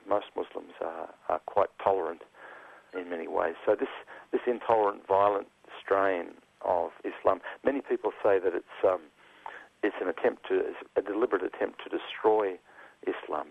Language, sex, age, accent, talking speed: English, male, 50-69, Australian, 150 wpm